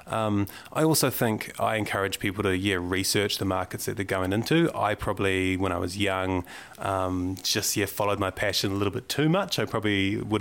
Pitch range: 100-115 Hz